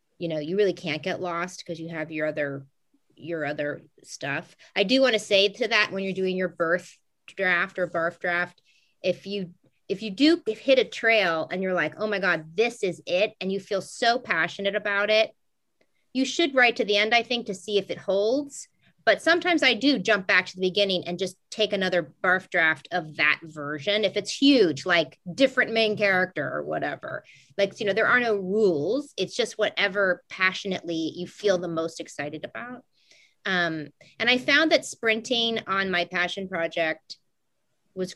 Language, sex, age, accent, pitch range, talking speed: English, female, 30-49, American, 165-210 Hz, 195 wpm